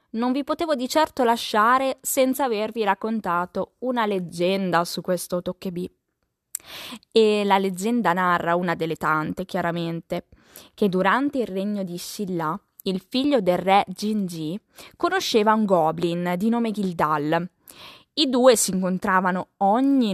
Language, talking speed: Italian, 130 wpm